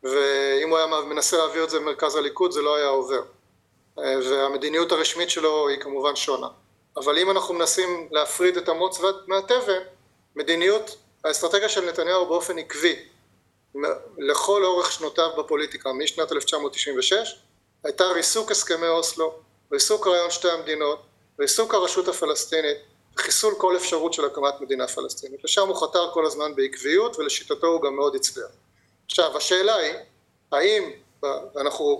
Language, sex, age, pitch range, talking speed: Hebrew, male, 30-49, 160-225 Hz, 135 wpm